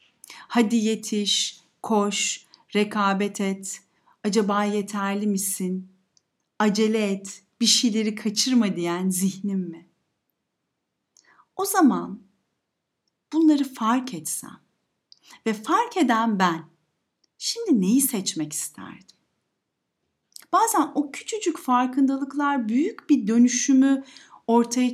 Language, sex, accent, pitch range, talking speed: Turkish, female, native, 200-265 Hz, 90 wpm